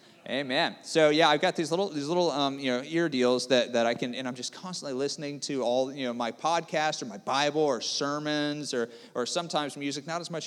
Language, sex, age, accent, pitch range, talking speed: English, male, 30-49, American, 120-150 Hz, 235 wpm